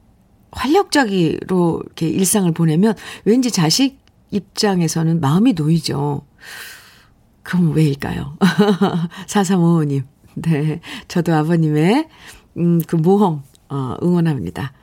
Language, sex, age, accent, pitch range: Korean, female, 50-69, native, 165-240 Hz